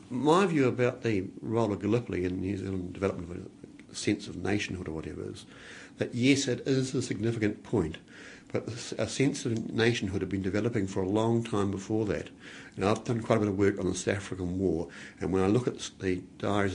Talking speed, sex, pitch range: 215 wpm, male, 95-120 Hz